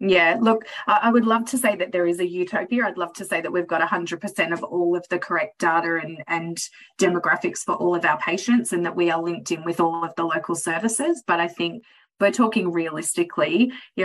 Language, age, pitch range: English, 30-49, 165-185 Hz